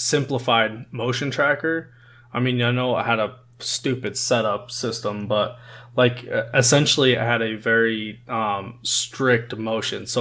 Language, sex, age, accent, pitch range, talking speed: English, male, 20-39, American, 115-125 Hz, 140 wpm